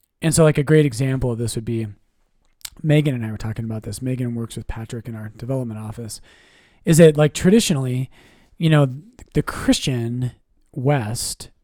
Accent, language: American, English